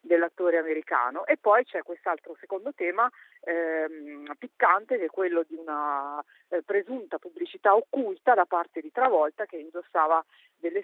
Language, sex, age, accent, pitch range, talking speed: Italian, female, 40-59, native, 165-240 Hz, 145 wpm